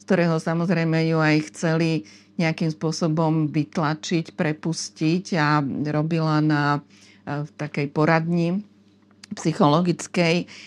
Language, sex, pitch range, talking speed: Slovak, female, 155-180 Hz, 90 wpm